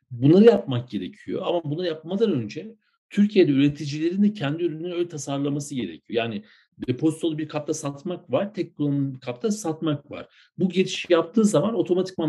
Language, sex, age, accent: Turkish, male, 60-79, native